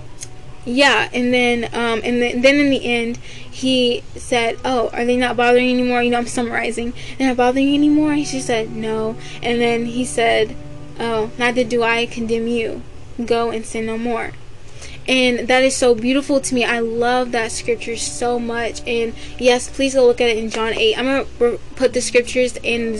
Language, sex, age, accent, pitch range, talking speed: English, female, 10-29, American, 225-250 Hz, 205 wpm